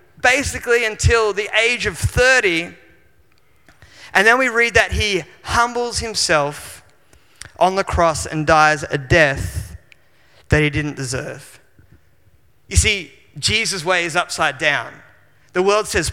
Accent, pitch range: Australian, 170-210 Hz